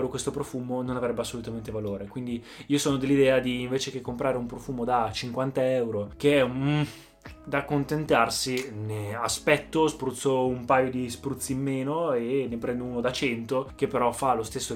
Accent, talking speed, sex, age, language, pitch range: native, 175 wpm, male, 20-39, Italian, 120-155 Hz